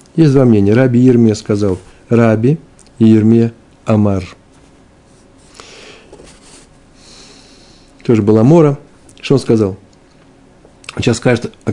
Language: Russian